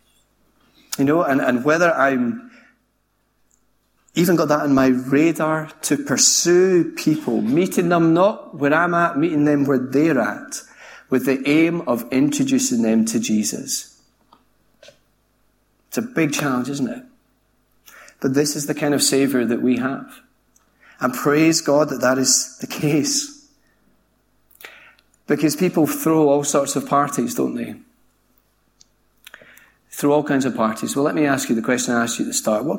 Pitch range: 130-170 Hz